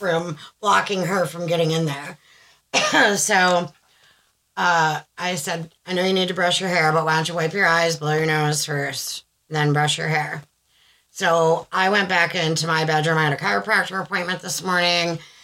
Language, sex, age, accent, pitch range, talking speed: English, female, 30-49, American, 155-180 Hz, 185 wpm